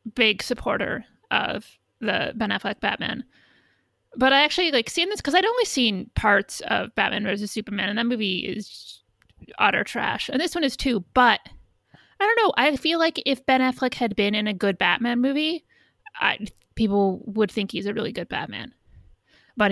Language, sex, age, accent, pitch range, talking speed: English, female, 30-49, American, 190-235 Hz, 180 wpm